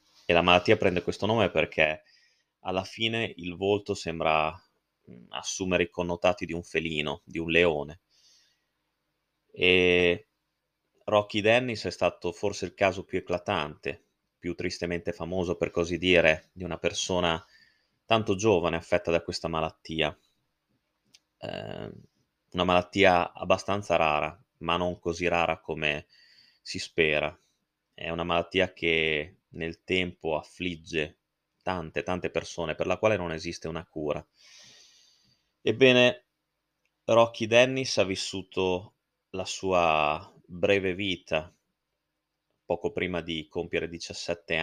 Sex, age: male, 20-39